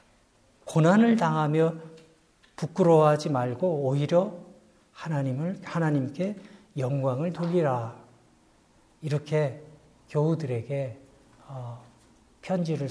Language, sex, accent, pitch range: Korean, male, native, 135-195 Hz